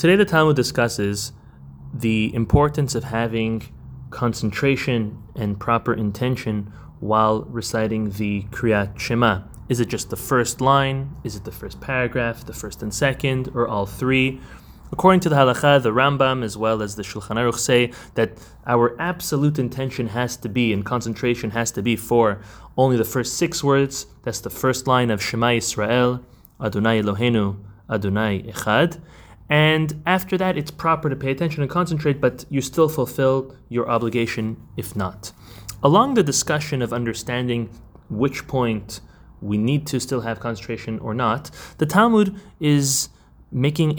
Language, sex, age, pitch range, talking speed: English, male, 20-39, 110-140 Hz, 155 wpm